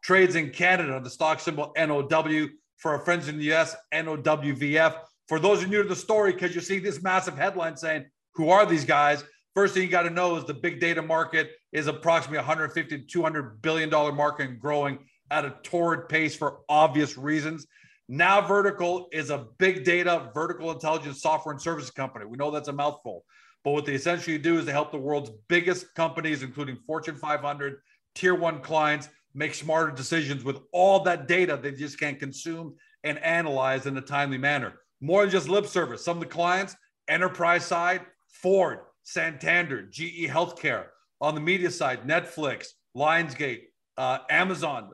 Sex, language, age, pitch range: male, English, 40-59, 150-175 Hz